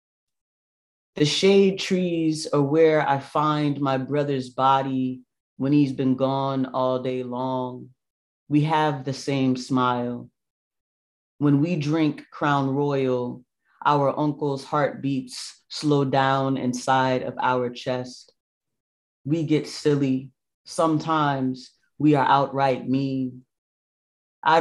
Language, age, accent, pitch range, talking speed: English, 30-49, American, 130-145 Hz, 110 wpm